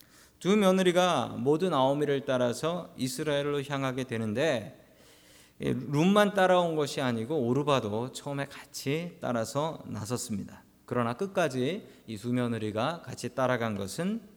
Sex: male